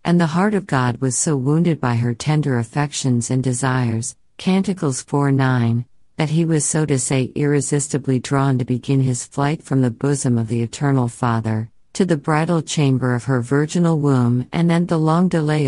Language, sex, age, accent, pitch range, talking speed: English, female, 50-69, American, 125-160 Hz, 190 wpm